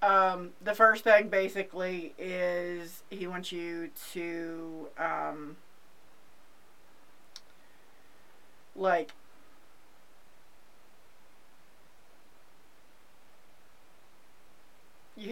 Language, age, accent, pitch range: English, 30-49, American, 170-190 Hz